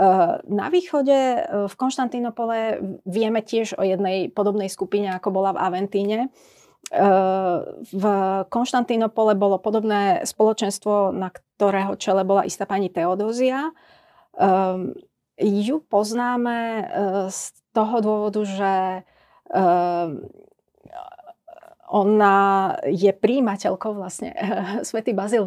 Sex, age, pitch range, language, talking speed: female, 30-49, 190-235 Hz, Slovak, 90 wpm